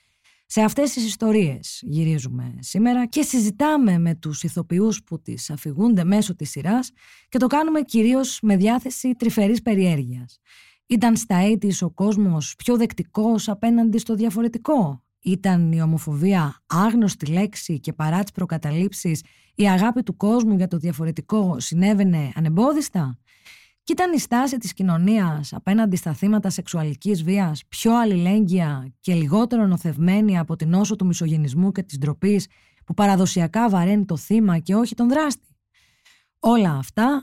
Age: 20-39